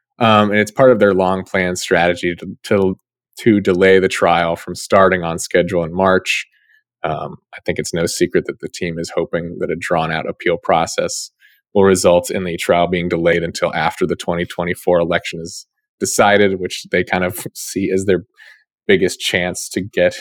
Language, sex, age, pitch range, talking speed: English, male, 20-39, 85-105 Hz, 180 wpm